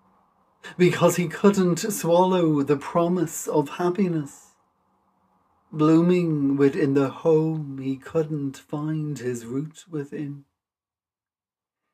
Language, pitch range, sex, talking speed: English, 135-180 Hz, male, 90 wpm